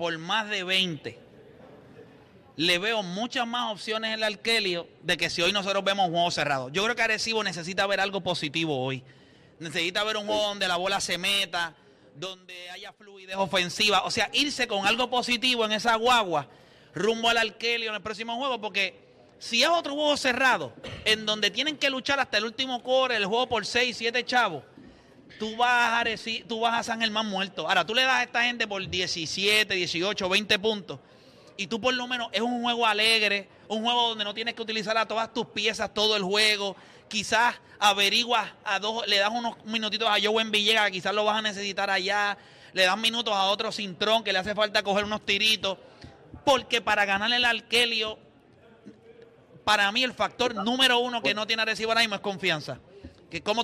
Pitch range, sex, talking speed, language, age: 190-230 Hz, male, 200 wpm, Spanish, 30-49